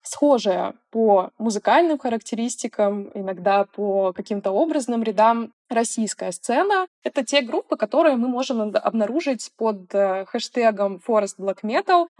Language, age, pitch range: Russian, 20-39, 200-255 Hz